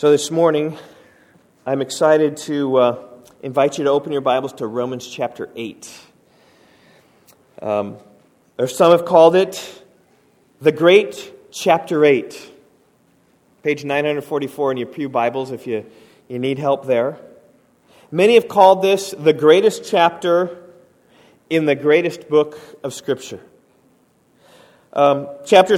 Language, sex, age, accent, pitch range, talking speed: English, male, 40-59, American, 140-190 Hz, 130 wpm